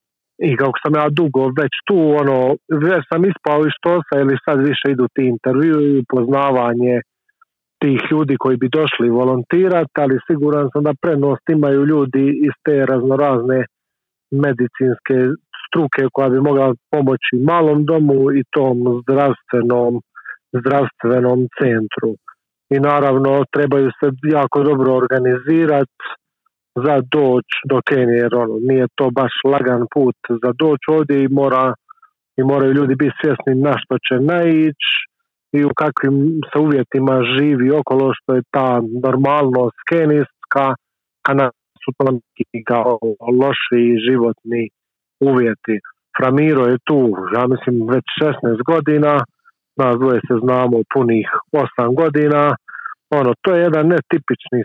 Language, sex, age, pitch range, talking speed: Croatian, male, 40-59, 125-150 Hz, 130 wpm